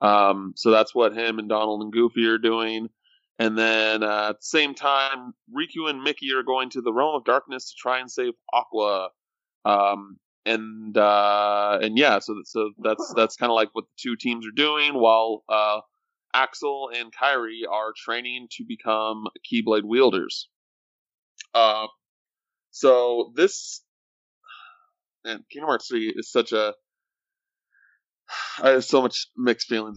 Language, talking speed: English, 155 wpm